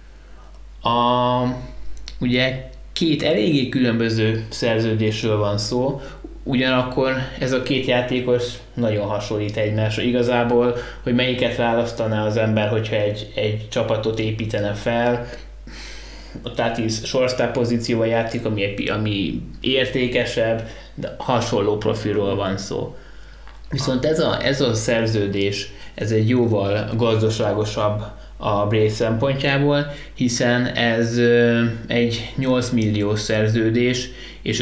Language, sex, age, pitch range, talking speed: Hungarian, male, 20-39, 105-120 Hz, 105 wpm